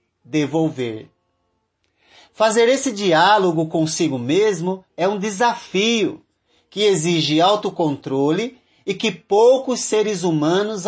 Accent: Brazilian